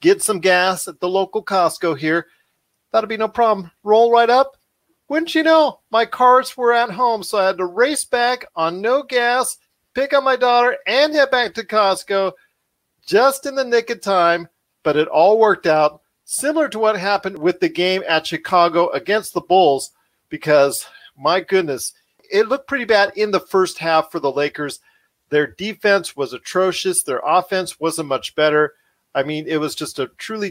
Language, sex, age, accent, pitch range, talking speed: English, male, 40-59, American, 155-220 Hz, 185 wpm